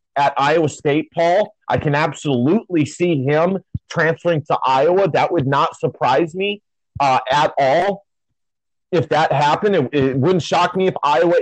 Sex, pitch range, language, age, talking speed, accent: male, 135-175 Hz, English, 30-49, 160 wpm, American